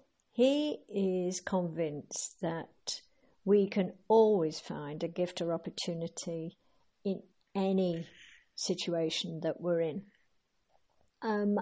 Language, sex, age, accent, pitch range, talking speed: English, female, 60-79, British, 170-210 Hz, 100 wpm